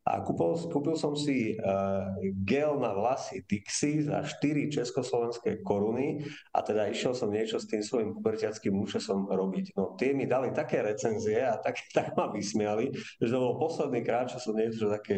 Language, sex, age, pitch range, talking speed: Slovak, male, 40-59, 100-130 Hz, 175 wpm